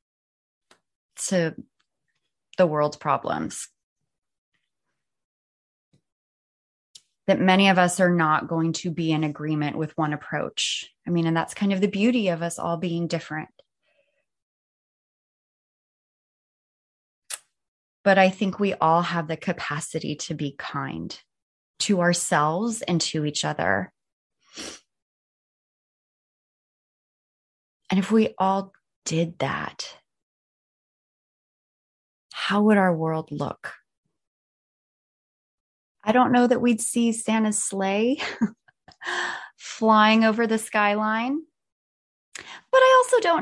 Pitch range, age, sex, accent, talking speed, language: 165-240 Hz, 20-39, female, American, 105 wpm, English